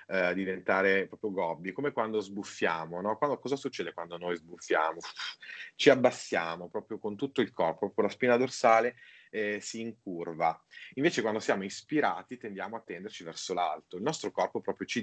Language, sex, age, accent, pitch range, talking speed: Italian, male, 30-49, native, 90-115 Hz, 170 wpm